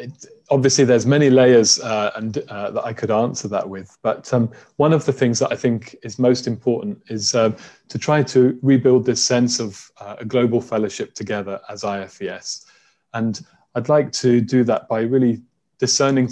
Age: 20-39